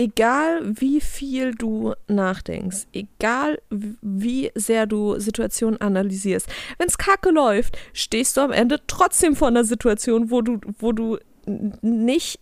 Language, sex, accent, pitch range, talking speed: German, female, German, 205-260 Hz, 135 wpm